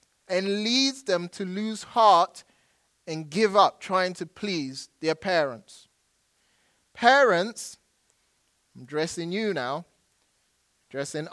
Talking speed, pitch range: 105 wpm, 155-215 Hz